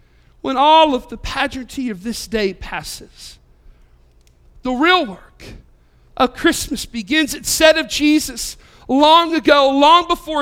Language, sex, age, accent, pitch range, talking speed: English, male, 50-69, American, 255-345 Hz, 130 wpm